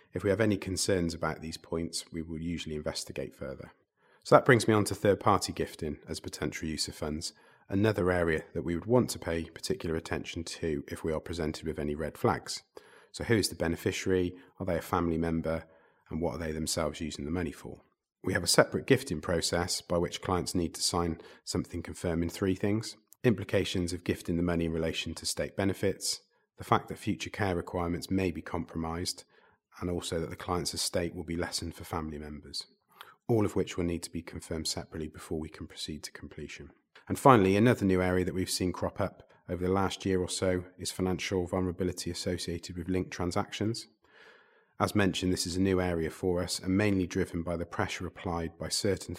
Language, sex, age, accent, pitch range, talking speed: English, male, 30-49, British, 80-95 Hz, 205 wpm